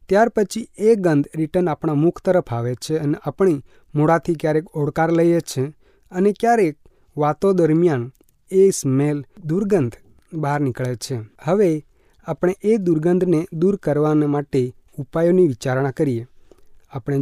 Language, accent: Hindi, native